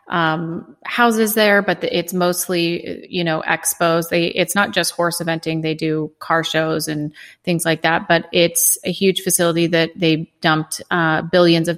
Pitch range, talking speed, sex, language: 160-175 Hz, 175 wpm, female, English